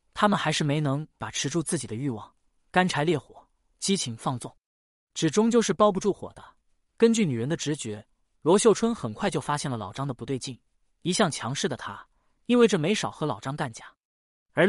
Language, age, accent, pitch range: Chinese, 20-39, native, 130-180 Hz